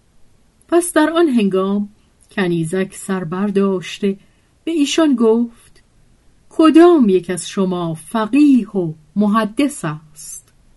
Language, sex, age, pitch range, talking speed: Persian, female, 40-59, 170-255 Hz, 95 wpm